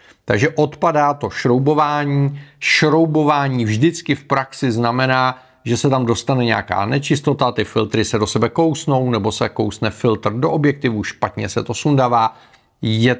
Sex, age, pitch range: male, 40-59, 115-150 Hz